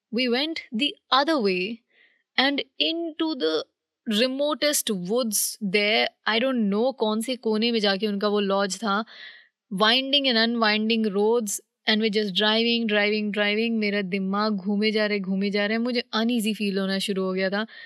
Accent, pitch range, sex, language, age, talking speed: native, 200-240 Hz, female, Hindi, 20-39, 180 wpm